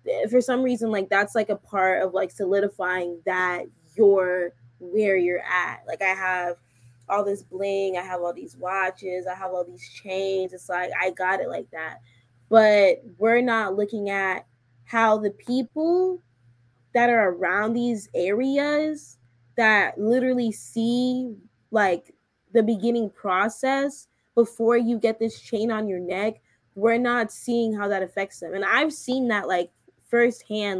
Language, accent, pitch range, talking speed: English, American, 180-230 Hz, 155 wpm